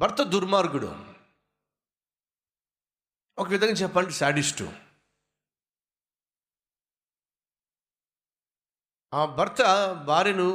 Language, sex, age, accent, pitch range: Telugu, male, 50-69, native, 150-200 Hz